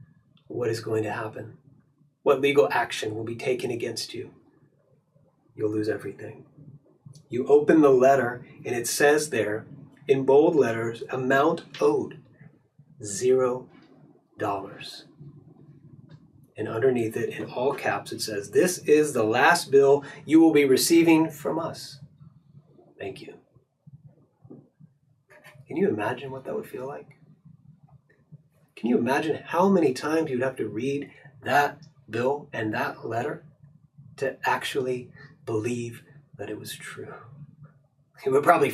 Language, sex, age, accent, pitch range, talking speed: English, male, 30-49, American, 130-155 Hz, 130 wpm